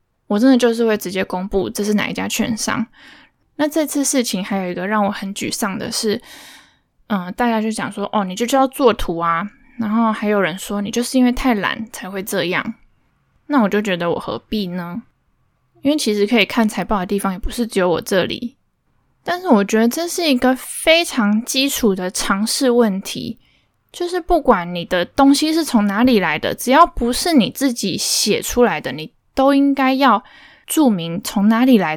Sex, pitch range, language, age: female, 200-260 Hz, Chinese, 10-29